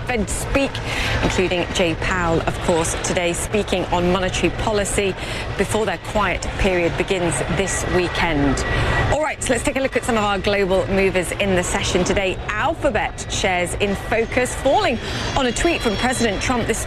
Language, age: English, 30-49